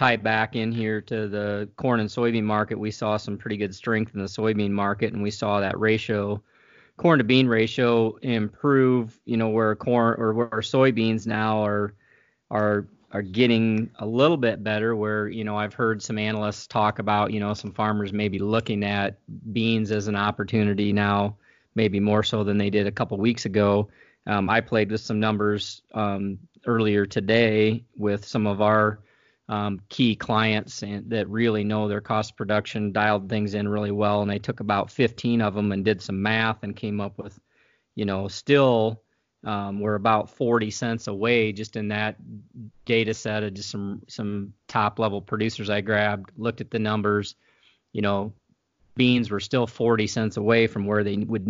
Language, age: English, 30-49